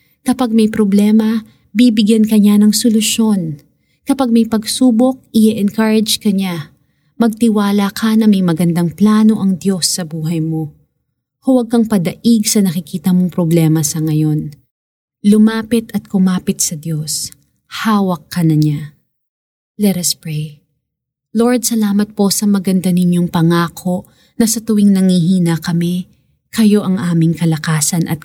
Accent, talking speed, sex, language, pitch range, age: native, 135 wpm, female, Filipino, 155-210 Hz, 20-39